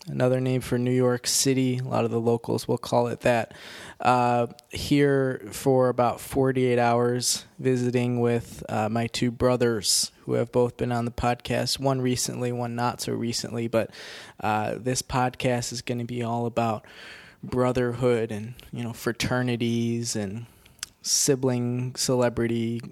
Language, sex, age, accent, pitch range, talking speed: English, male, 20-39, American, 115-130 Hz, 150 wpm